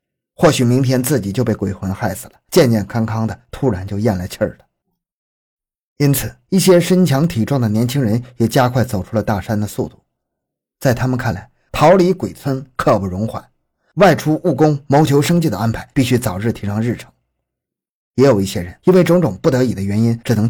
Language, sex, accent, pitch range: Chinese, male, native, 105-155 Hz